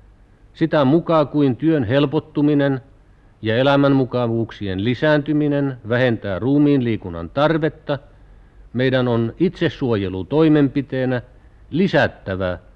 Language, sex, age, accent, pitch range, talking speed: Finnish, male, 60-79, native, 100-145 Hz, 75 wpm